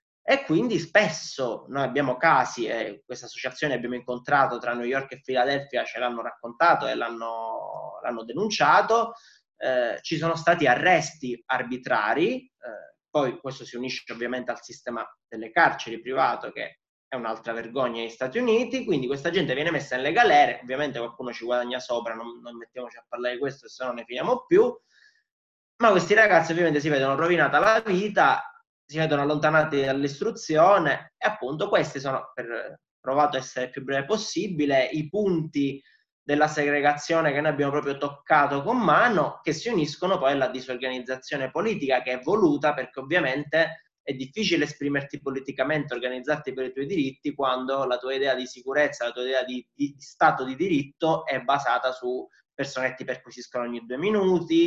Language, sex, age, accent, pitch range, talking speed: Italian, male, 20-39, native, 125-165 Hz, 170 wpm